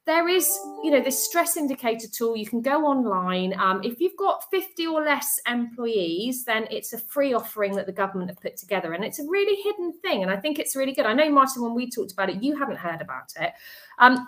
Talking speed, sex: 240 wpm, female